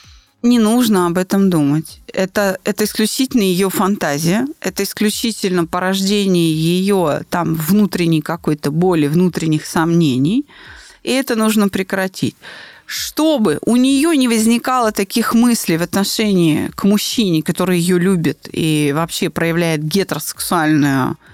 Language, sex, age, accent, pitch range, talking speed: Russian, female, 30-49, native, 185-240 Hz, 115 wpm